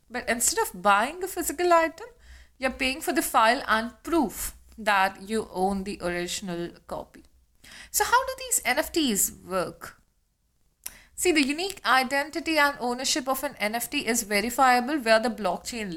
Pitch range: 210-290 Hz